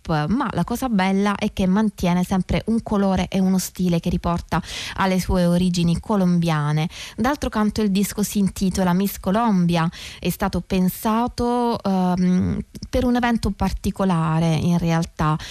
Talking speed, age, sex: 145 wpm, 20-39, female